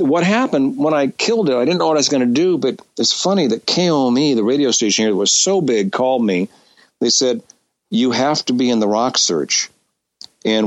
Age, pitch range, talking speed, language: 50-69, 110-145 Hz, 230 wpm, English